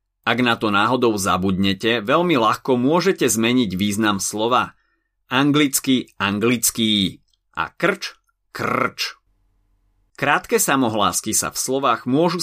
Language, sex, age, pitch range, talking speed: Slovak, male, 30-49, 95-130 Hz, 105 wpm